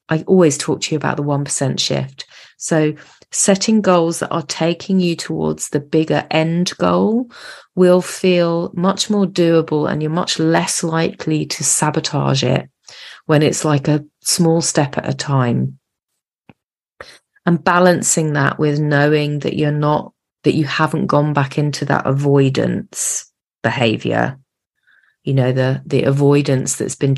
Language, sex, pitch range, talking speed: English, female, 140-175 Hz, 150 wpm